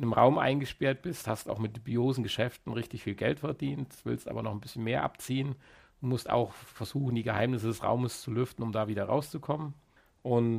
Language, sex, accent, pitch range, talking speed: German, male, German, 115-150 Hz, 200 wpm